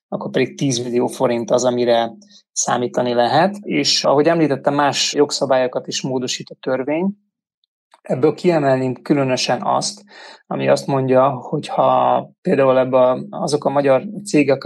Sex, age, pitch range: male, 20-39, 130-155 Hz